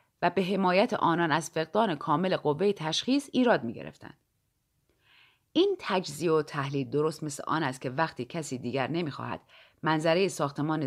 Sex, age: female, 30-49